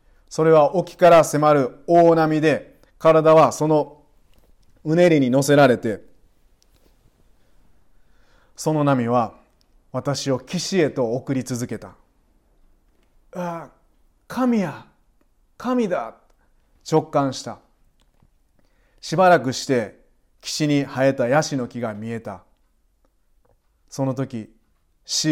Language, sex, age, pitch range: Japanese, male, 30-49, 115-150 Hz